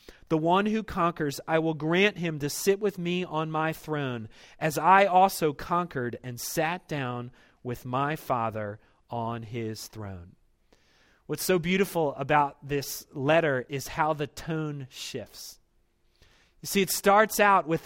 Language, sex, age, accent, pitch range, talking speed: English, male, 40-59, American, 135-175 Hz, 150 wpm